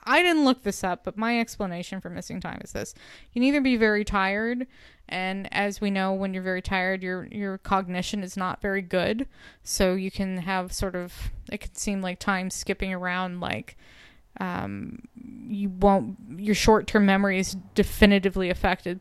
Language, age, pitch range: English, 20-39, 185-225 Hz